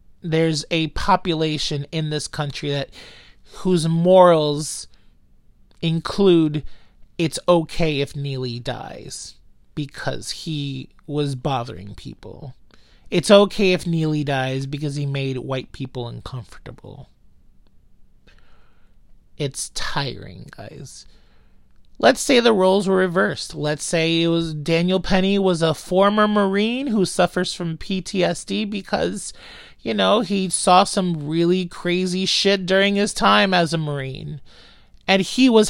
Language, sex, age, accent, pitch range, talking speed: English, male, 30-49, American, 140-185 Hz, 120 wpm